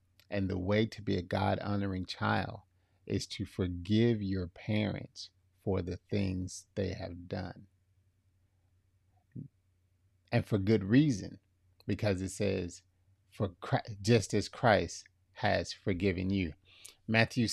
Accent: American